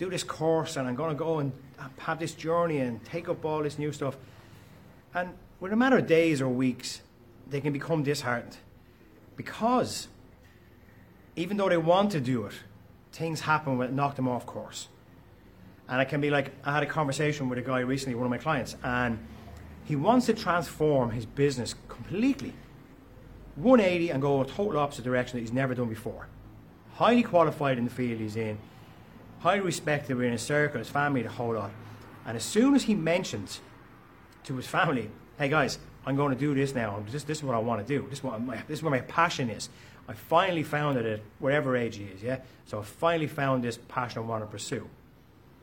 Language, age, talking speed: English, 30-49, 205 wpm